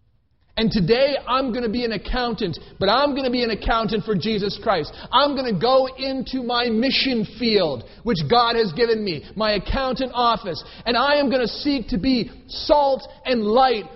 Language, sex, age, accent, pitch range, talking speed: English, male, 40-59, American, 185-255 Hz, 195 wpm